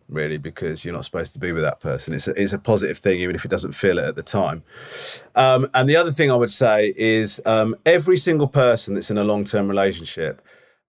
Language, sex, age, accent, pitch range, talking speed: English, male, 30-49, British, 100-130 Hz, 235 wpm